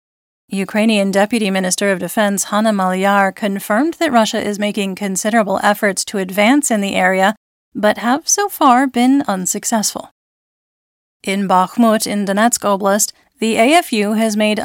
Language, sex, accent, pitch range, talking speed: English, female, American, 200-230 Hz, 140 wpm